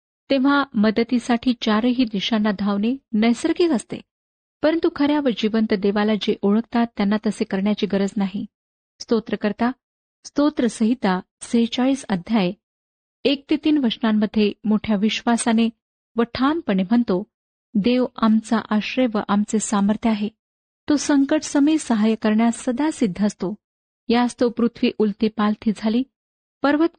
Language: Marathi